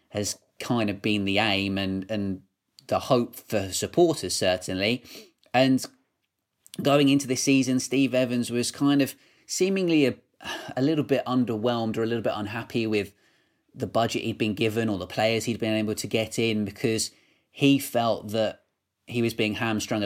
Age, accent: 30-49, British